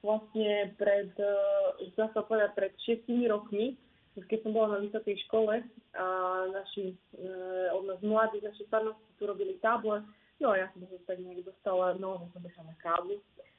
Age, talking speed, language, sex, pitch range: 20-39, 170 wpm, Slovak, female, 185-210 Hz